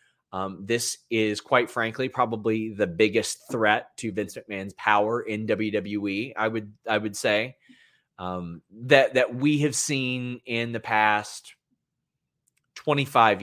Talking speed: 135 wpm